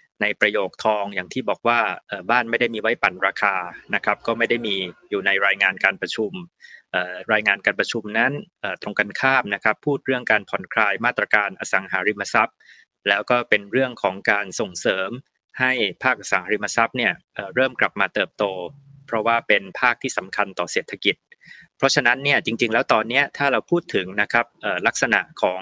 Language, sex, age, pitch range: Thai, male, 20-39, 100-130 Hz